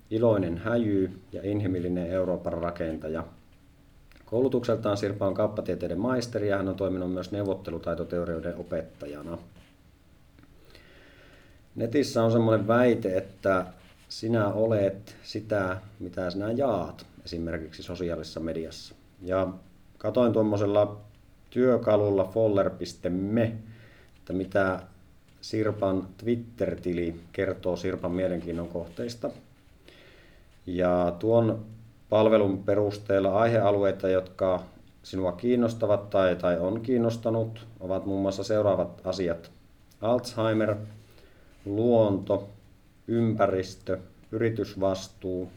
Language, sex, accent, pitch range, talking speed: Finnish, male, native, 90-105 Hz, 85 wpm